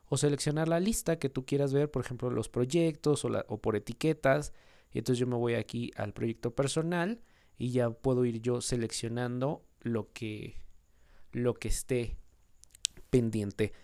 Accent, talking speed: Mexican, 165 wpm